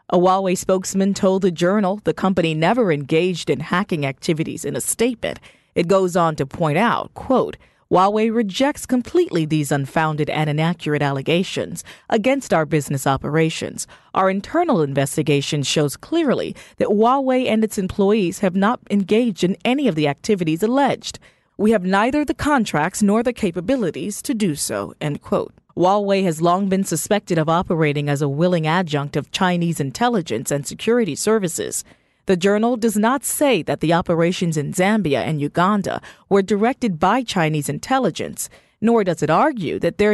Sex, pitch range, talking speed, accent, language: female, 160-225 Hz, 160 wpm, American, English